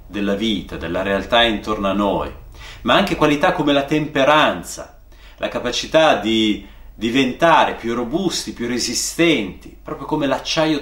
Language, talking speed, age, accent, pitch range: Italian, 135 wpm, 30-49, native, 110-160 Hz